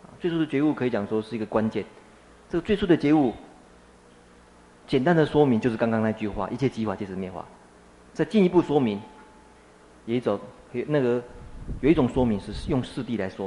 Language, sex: Chinese, male